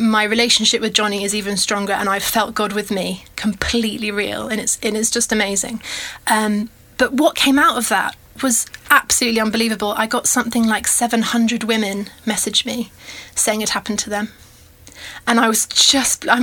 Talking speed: 180 wpm